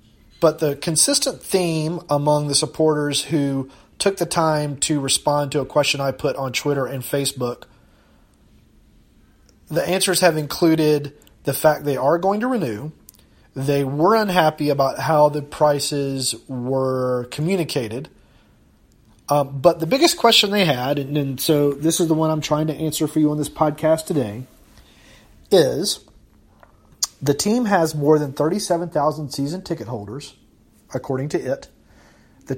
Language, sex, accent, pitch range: English, male, American, 135-165 Hz